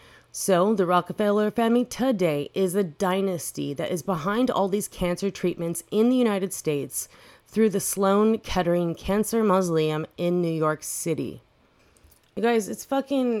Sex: female